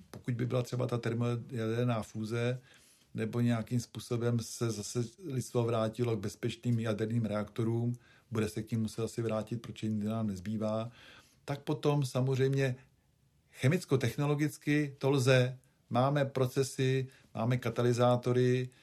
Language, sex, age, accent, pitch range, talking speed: Czech, male, 50-69, native, 110-125 Hz, 125 wpm